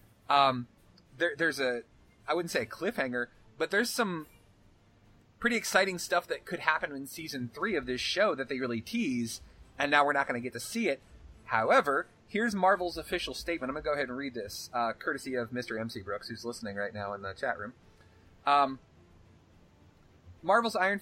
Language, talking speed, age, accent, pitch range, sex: English, 190 wpm, 30-49, American, 120-160 Hz, male